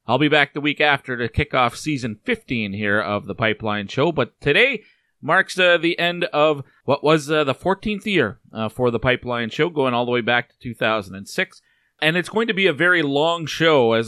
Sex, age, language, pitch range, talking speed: male, 30-49, English, 120-155 Hz, 215 wpm